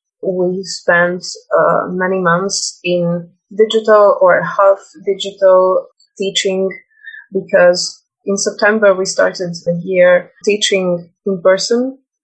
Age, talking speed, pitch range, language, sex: 20-39, 100 wpm, 175-210 Hz, English, female